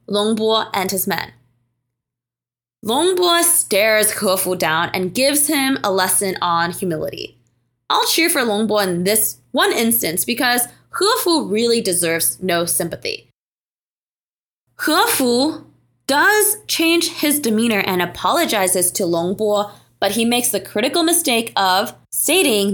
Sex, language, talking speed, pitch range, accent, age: female, English, 120 wpm, 185-295 Hz, American, 20-39